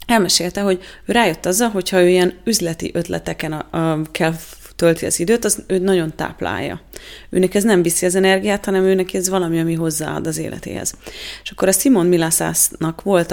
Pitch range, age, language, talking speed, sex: 160-190 Hz, 30-49, Hungarian, 175 wpm, female